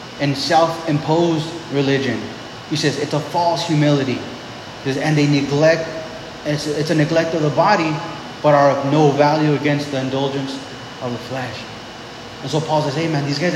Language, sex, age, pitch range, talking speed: English, male, 20-39, 140-165 Hz, 165 wpm